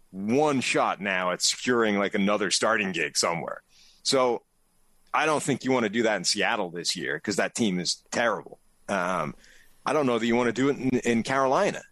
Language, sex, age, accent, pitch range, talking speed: English, male, 30-49, American, 105-135 Hz, 205 wpm